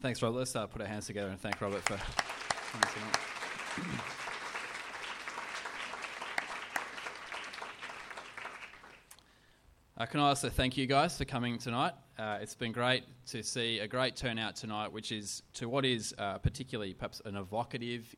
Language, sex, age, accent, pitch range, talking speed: English, male, 20-39, Australian, 100-125 Hz, 140 wpm